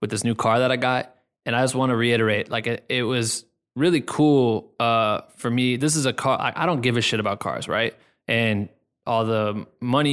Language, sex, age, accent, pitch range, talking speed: English, male, 20-39, American, 110-120 Hz, 230 wpm